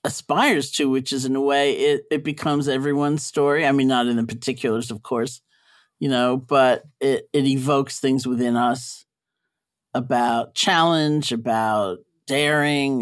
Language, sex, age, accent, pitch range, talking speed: English, male, 50-69, American, 125-145 Hz, 150 wpm